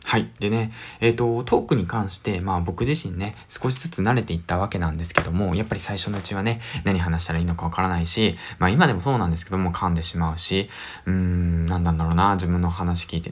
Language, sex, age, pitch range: Japanese, male, 20-39, 85-115 Hz